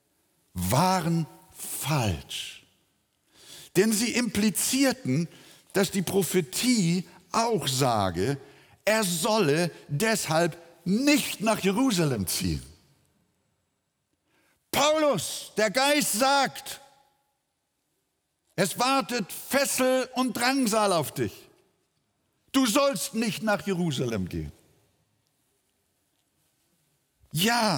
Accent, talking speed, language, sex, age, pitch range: German, 75 wpm, German, male, 60-79, 155-225 Hz